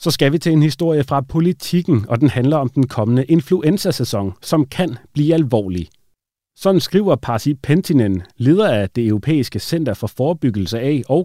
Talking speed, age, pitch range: 170 wpm, 40-59, 105-155 Hz